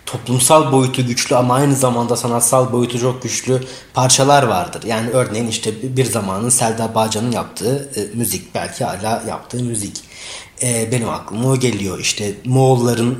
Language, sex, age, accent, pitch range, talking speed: Turkish, male, 30-49, native, 110-135 Hz, 140 wpm